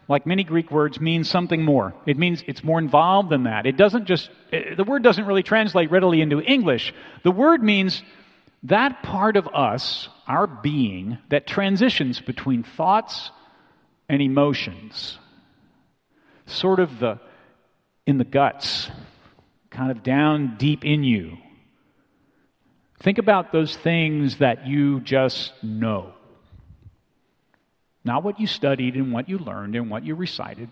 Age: 50-69